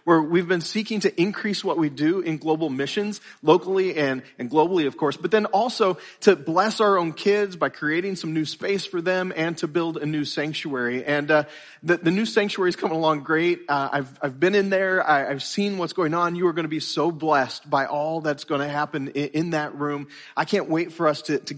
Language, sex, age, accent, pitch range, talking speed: English, male, 30-49, American, 140-175 Hz, 230 wpm